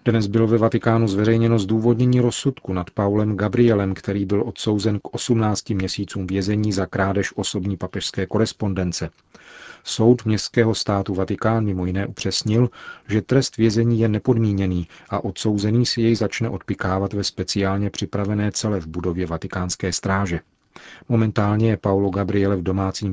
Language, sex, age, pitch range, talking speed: Czech, male, 40-59, 95-110 Hz, 140 wpm